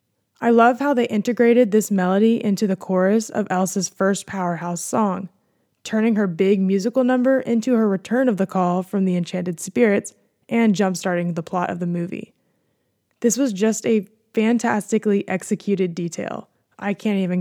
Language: English